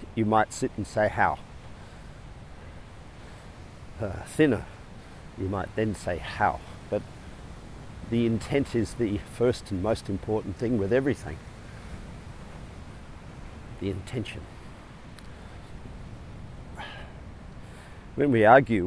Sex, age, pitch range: male, 50-69, 95-115 Hz